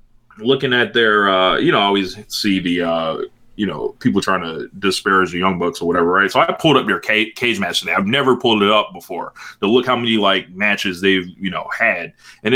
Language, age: English, 20-39